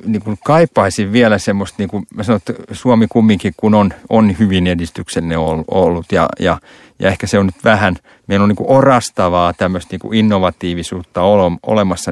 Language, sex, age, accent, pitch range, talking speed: Finnish, male, 30-49, native, 90-110 Hz, 165 wpm